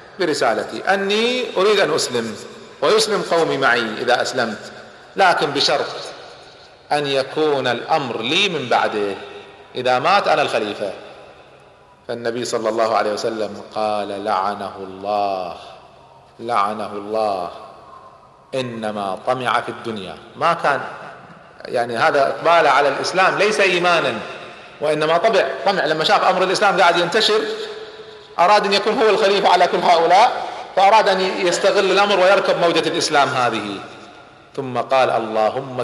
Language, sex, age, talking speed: Arabic, male, 40-59, 120 wpm